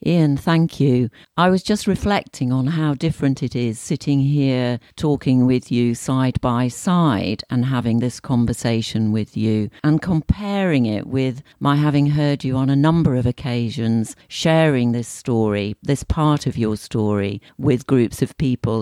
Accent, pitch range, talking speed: British, 115-145 Hz, 165 wpm